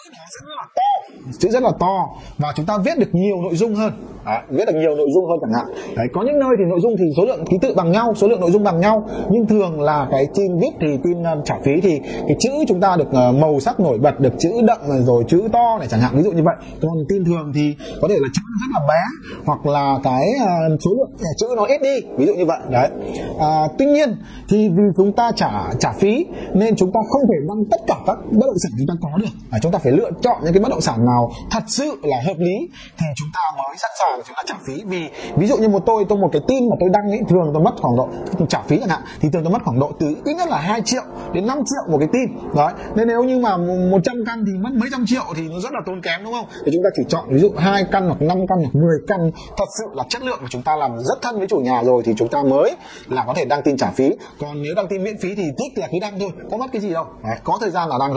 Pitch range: 155-220 Hz